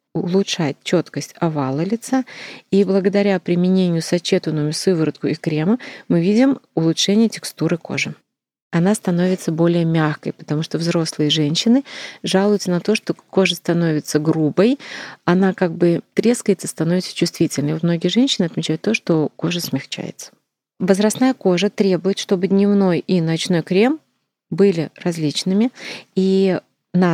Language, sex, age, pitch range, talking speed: Russian, female, 30-49, 165-200 Hz, 125 wpm